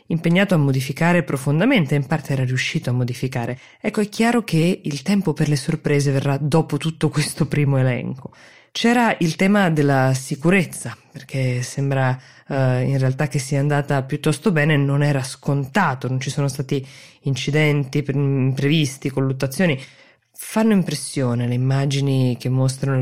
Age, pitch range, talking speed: 20-39, 135-165 Hz, 145 wpm